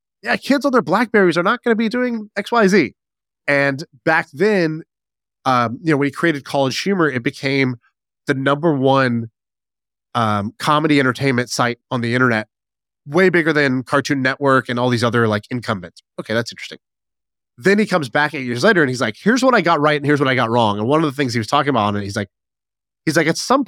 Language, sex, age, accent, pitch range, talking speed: English, male, 20-39, American, 120-160 Hz, 225 wpm